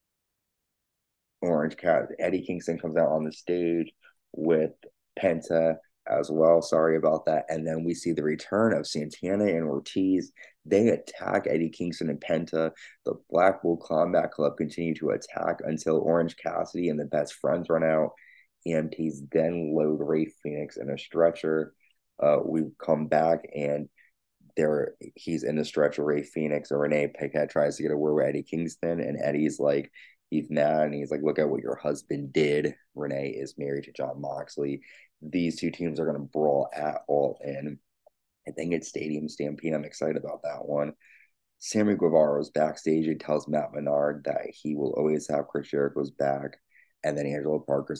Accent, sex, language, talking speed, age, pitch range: American, male, English, 175 wpm, 20-39, 75-80 Hz